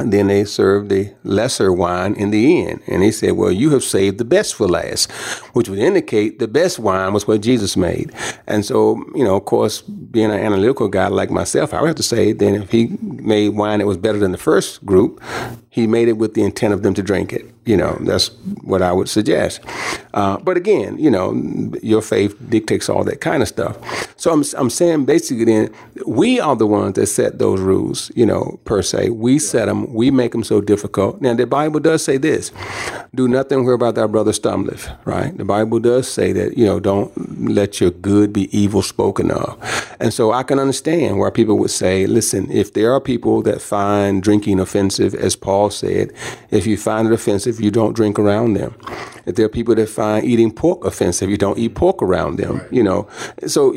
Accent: American